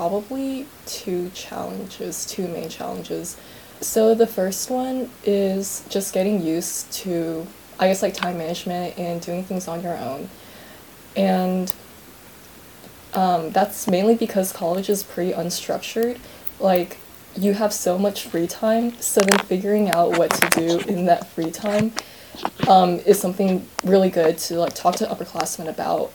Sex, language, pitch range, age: female, English, 175-215 Hz, 20-39